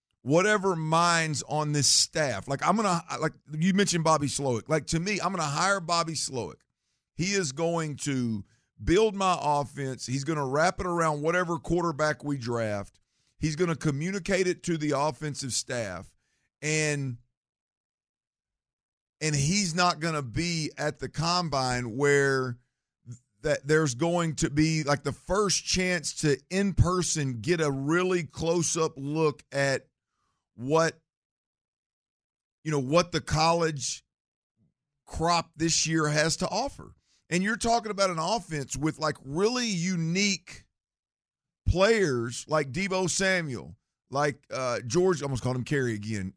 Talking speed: 150 wpm